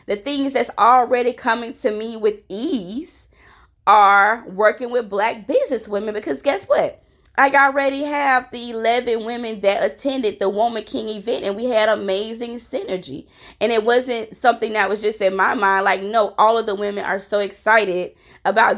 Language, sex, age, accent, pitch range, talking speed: English, female, 20-39, American, 200-240 Hz, 175 wpm